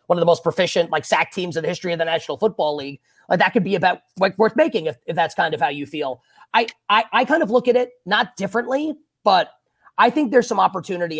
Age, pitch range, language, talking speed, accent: 30-49, 160-220 Hz, English, 255 wpm, American